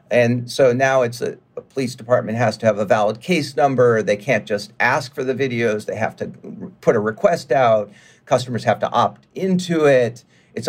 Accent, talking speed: American, 210 wpm